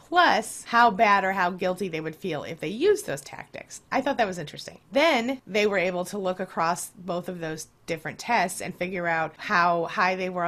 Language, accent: English, American